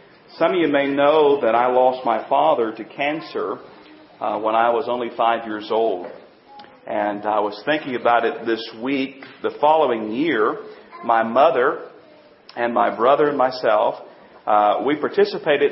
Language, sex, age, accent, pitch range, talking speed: English, male, 40-59, American, 115-155 Hz, 155 wpm